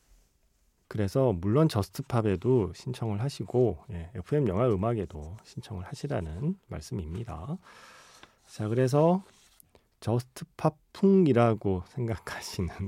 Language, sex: Korean, male